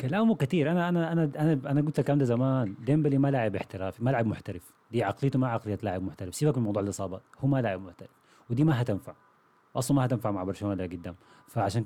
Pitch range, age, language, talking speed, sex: 100-140 Hz, 30-49, Arabic, 220 wpm, male